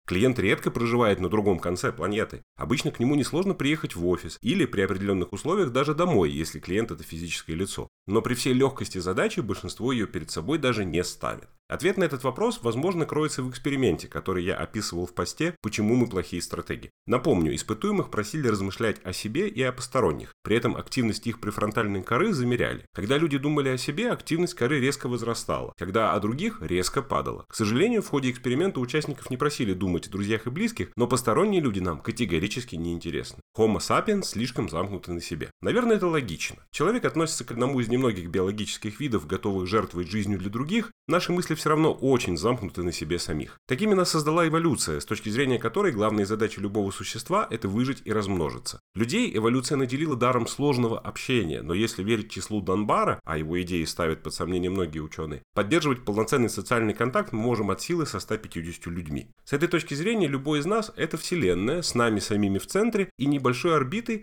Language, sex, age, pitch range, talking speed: Russian, male, 30-49, 95-145 Hz, 185 wpm